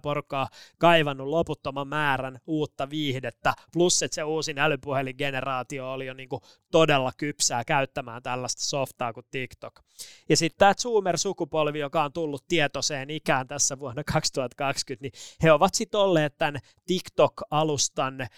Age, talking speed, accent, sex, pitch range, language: 20-39, 135 wpm, native, male, 135-165 Hz, Finnish